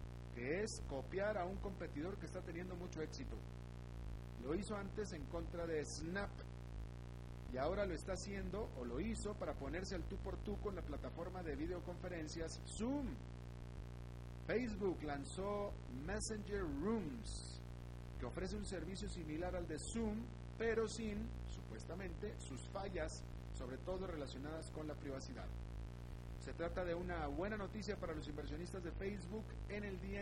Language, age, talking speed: Spanish, 40-59, 150 wpm